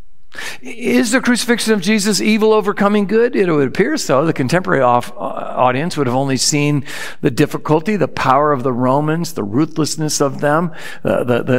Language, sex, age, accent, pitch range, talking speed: English, male, 60-79, American, 120-180 Hz, 160 wpm